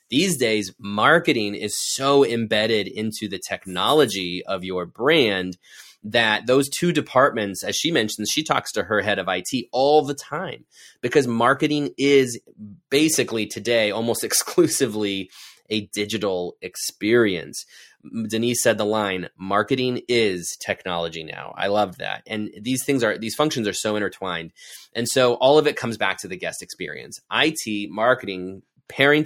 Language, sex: English, male